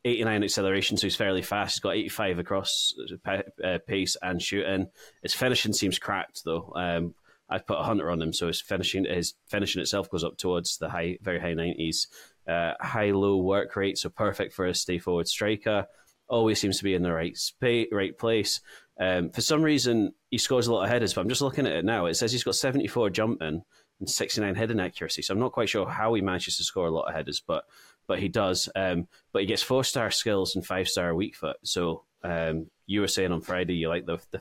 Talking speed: 220 wpm